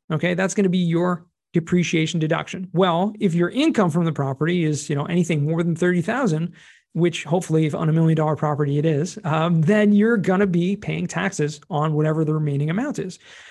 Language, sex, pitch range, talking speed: English, male, 155-195 Hz, 210 wpm